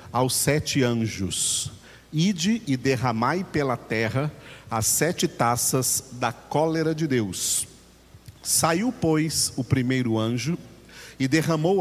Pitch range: 120-150 Hz